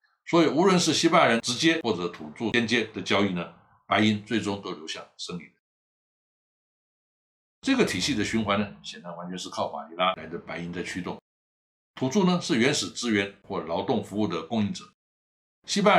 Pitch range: 95-140 Hz